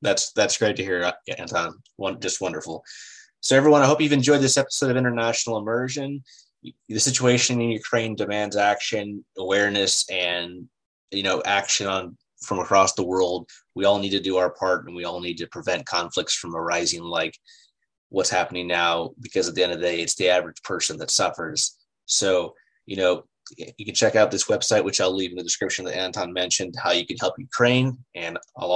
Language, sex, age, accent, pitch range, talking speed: English, male, 20-39, American, 90-120 Hz, 195 wpm